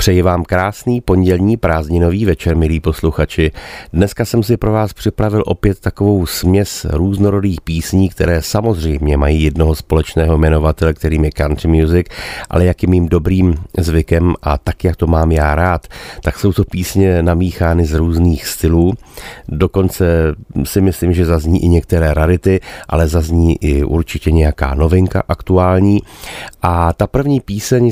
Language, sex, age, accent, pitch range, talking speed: Czech, male, 40-59, native, 80-95 Hz, 145 wpm